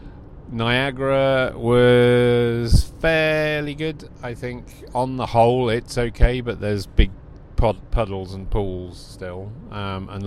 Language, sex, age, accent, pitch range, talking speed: English, male, 40-59, British, 95-120 Hz, 115 wpm